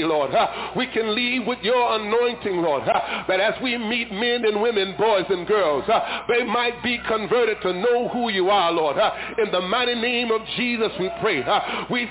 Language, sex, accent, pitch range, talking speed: English, male, American, 220-245 Hz, 185 wpm